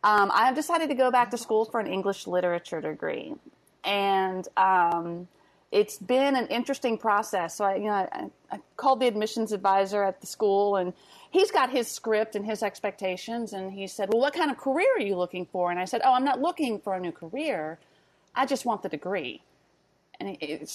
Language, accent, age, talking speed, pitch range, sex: English, American, 30-49, 210 wpm, 190-250 Hz, female